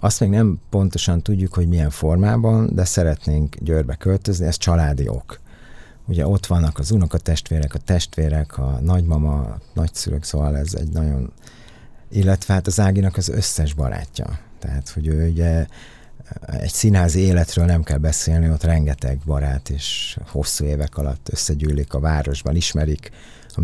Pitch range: 75-95 Hz